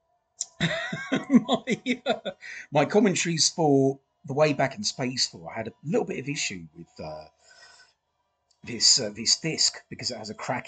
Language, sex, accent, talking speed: English, male, British, 165 wpm